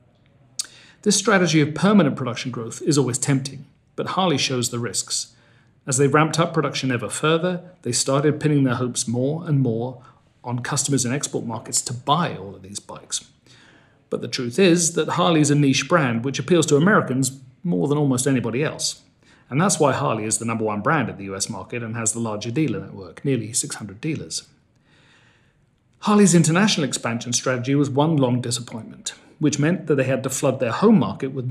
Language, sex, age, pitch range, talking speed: Spanish, male, 40-59, 120-155 Hz, 190 wpm